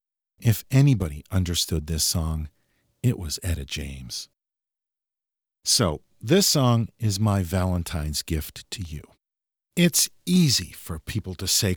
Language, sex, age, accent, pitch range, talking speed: English, male, 50-69, American, 90-140 Hz, 120 wpm